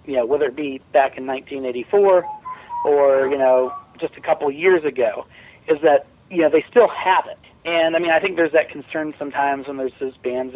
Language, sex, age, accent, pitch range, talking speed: English, male, 40-59, American, 135-165 Hz, 210 wpm